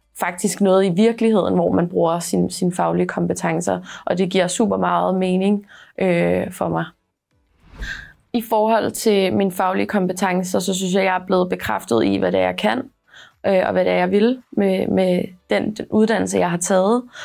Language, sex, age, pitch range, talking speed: Danish, female, 20-39, 175-205 Hz, 190 wpm